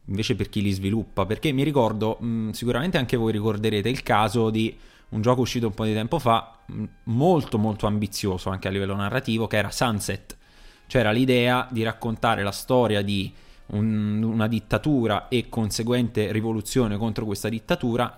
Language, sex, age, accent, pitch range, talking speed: Italian, male, 20-39, native, 105-130 Hz, 170 wpm